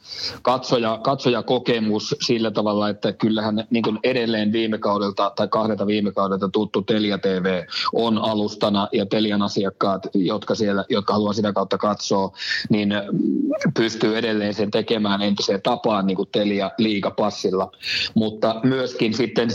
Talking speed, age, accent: 130 wpm, 30-49, native